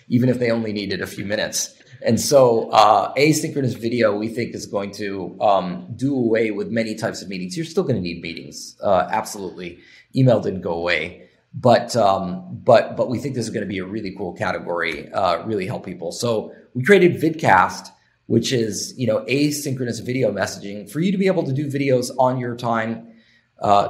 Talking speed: 200 wpm